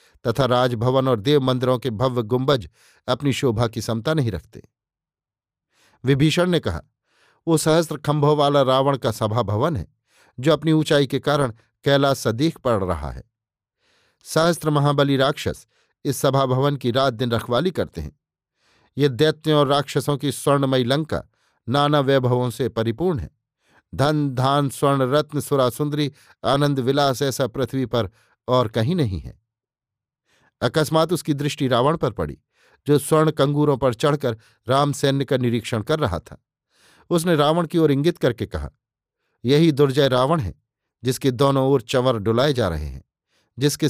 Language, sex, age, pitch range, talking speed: Hindi, male, 50-69, 120-150 Hz, 155 wpm